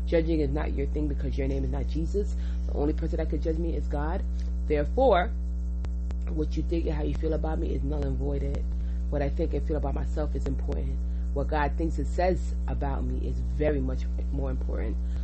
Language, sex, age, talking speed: English, female, 30-49, 215 wpm